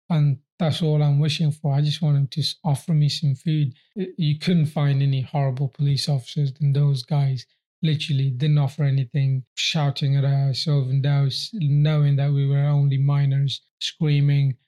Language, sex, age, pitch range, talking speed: English, male, 30-49, 140-155 Hz, 160 wpm